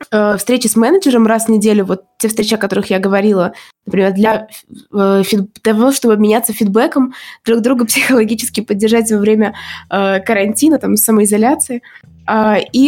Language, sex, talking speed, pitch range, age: Russian, female, 140 wpm, 195-235 Hz, 20-39